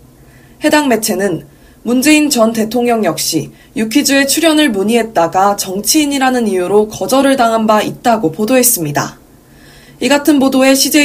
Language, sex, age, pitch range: Korean, female, 20-39, 200-270 Hz